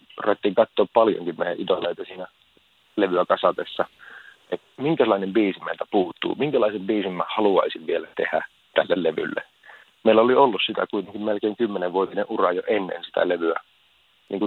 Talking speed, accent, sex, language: 140 wpm, native, male, Finnish